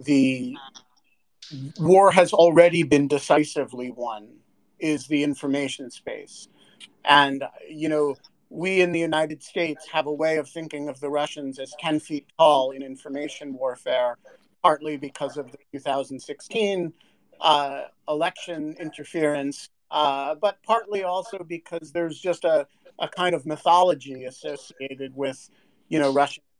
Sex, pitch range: male, 145-185 Hz